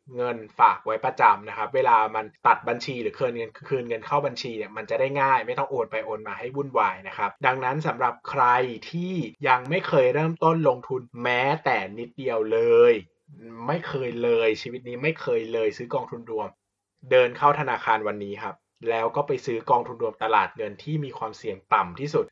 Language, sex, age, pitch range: Thai, male, 20-39, 120-175 Hz